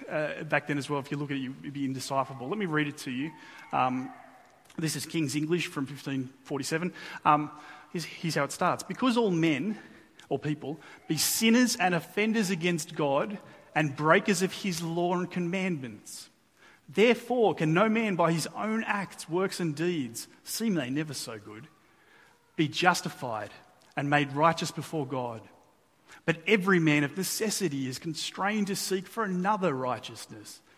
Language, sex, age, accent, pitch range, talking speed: English, male, 30-49, Australian, 140-180 Hz, 165 wpm